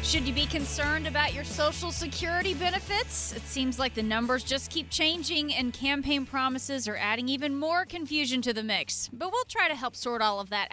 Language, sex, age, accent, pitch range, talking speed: English, female, 30-49, American, 210-275 Hz, 205 wpm